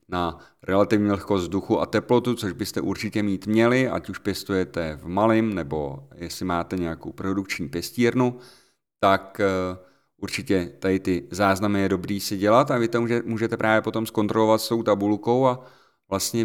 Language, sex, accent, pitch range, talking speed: Czech, male, native, 95-120 Hz, 155 wpm